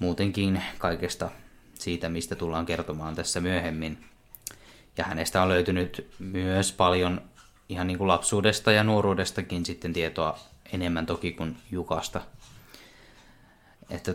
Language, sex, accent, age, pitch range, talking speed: Finnish, male, native, 20-39, 85-100 Hz, 115 wpm